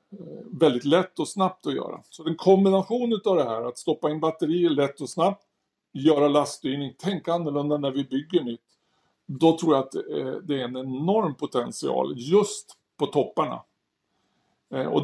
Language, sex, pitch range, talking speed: Swedish, male, 135-170 Hz, 165 wpm